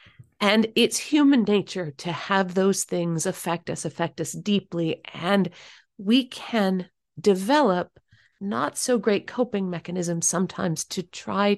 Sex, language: female, English